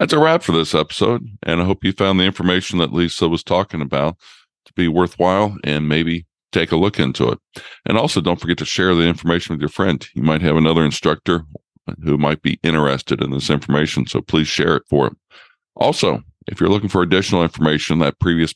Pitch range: 75-85 Hz